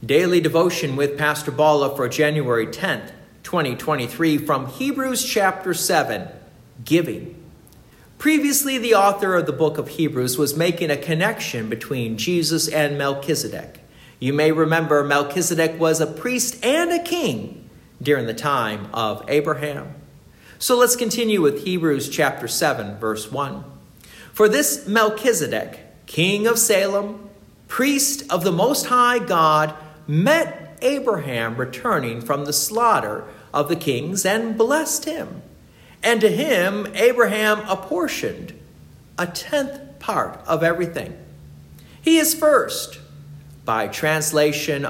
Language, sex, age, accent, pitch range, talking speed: English, male, 50-69, American, 145-220 Hz, 125 wpm